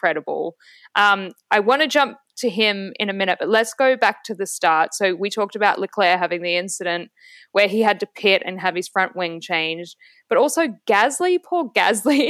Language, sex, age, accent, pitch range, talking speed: English, female, 10-29, Australian, 190-245 Hz, 205 wpm